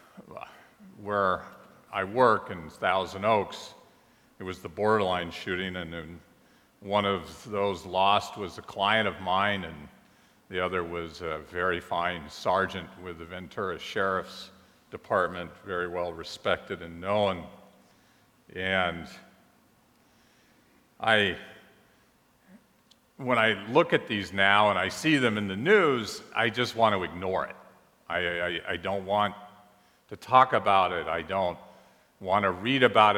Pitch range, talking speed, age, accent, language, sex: 90-105 Hz, 135 wpm, 50-69, American, English, male